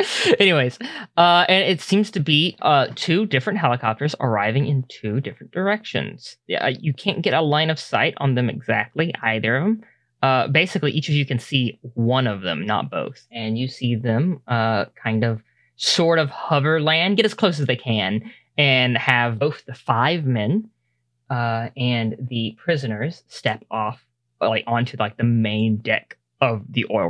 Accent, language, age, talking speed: American, English, 10-29, 175 wpm